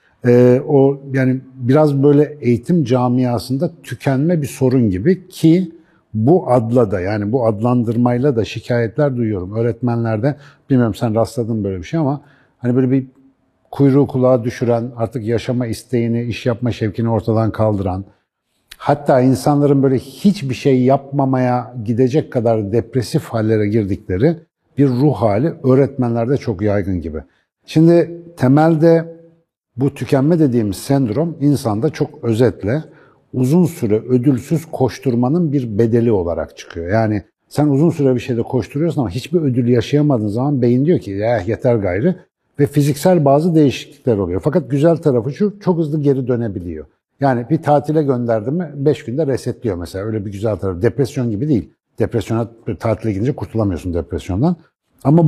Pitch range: 115-145 Hz